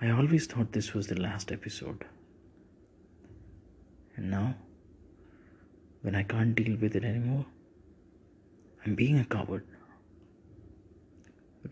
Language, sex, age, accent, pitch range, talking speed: English, male, 30-49, Indian, 85-110 Hz, 115 wpm